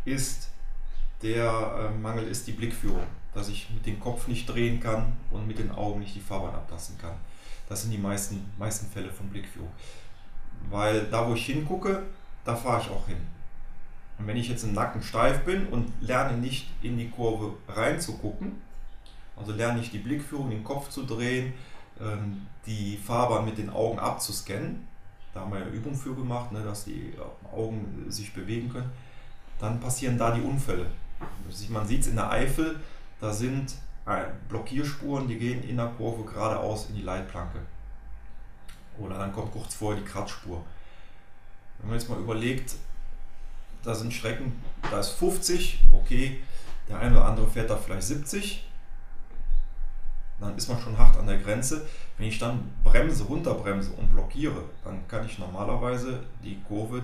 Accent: German